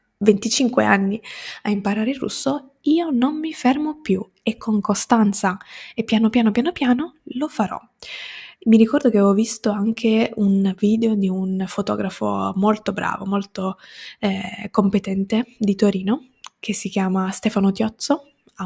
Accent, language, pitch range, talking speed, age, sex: native, Italian, 200-255 Hz, 145 wpm, 10-29, female